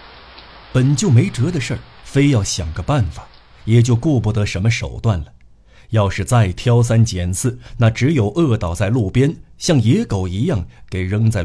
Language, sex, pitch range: Chinese, male, 90-125 Hz